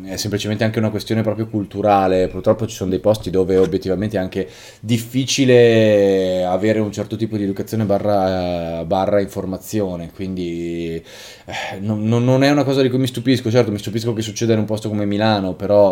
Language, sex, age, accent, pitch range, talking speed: Italian, male, 20-39, native, 95-120 Hz, 180 wpm